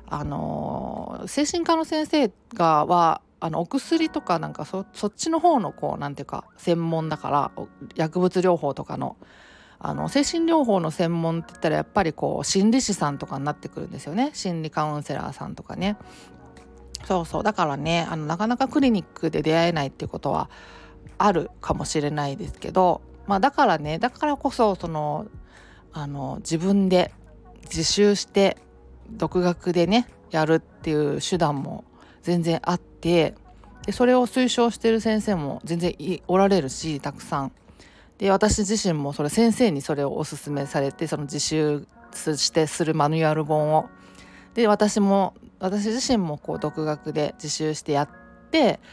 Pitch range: 150-215 Hz